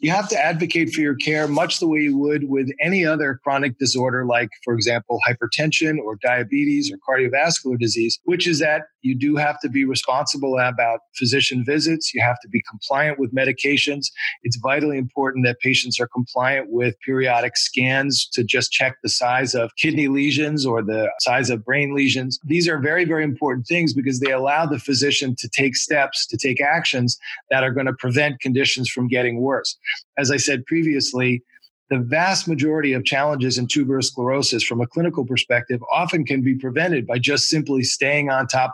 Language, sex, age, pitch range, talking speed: English, male, 40-59, 125-150 Hz, 185 wpm